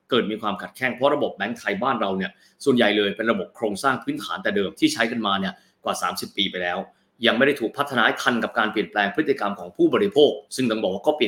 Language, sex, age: Thai, male, 20-39